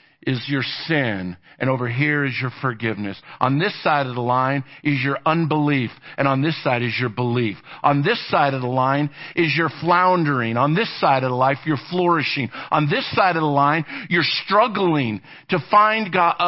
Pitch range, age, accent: 140-180 Hz, 50-69, American